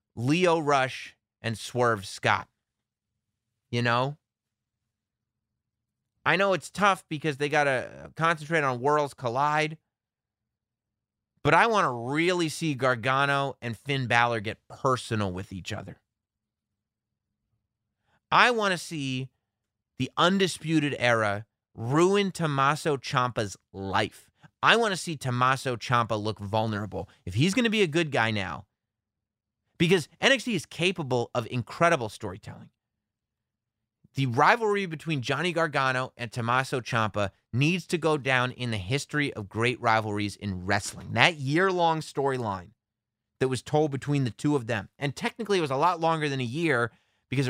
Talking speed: 140 wpm